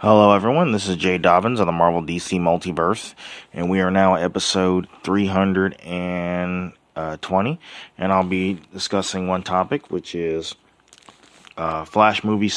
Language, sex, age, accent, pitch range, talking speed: English, male, 30-49, American, 90-100 Hz, 140 wpm